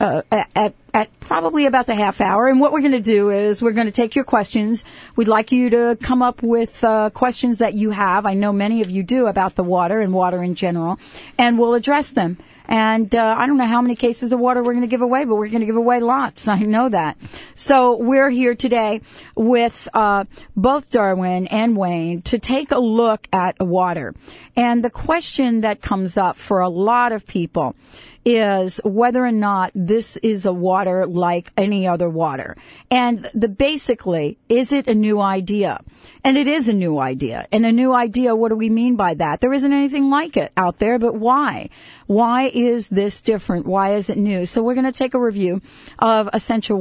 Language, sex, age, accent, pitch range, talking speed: English, female, 40-59, American, 195-245 Hz, 210 wpm